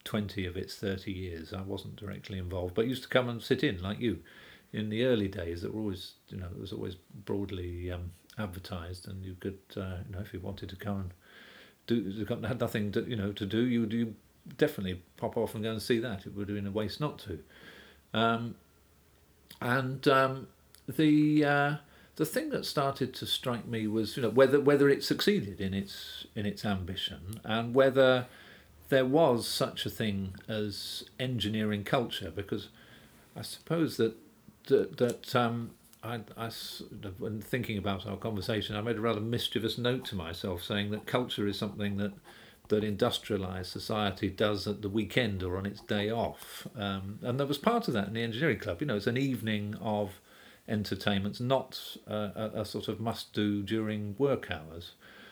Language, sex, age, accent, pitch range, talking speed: English, male, 50-69, British, 100-120 Hz, 190 wpm